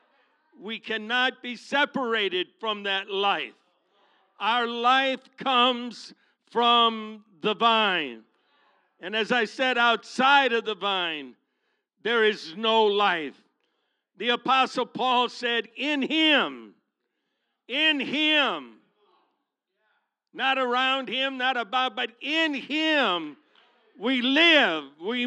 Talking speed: 105 wpm